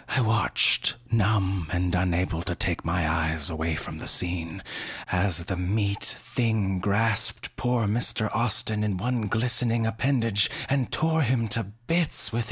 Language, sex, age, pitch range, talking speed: English, male, 30-49, 90-115 Hz, 150 wpm